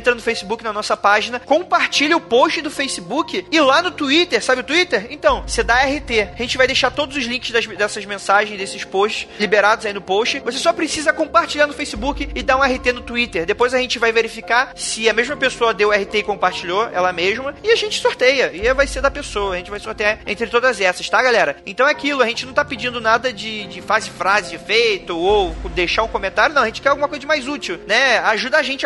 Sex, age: male, 20-39